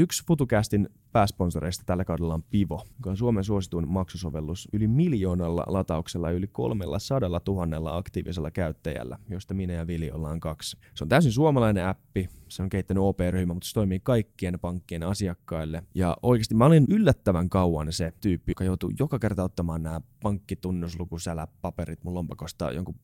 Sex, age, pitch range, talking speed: male, 20-39, 85-110 Hz, 160 wpm